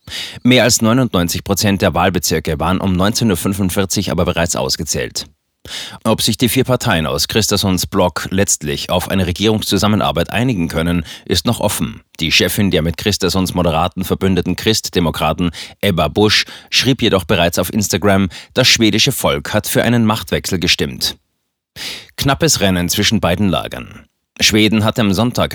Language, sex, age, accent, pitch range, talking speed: German, male, 30-49, German, 85-110 Hz, 145 wpm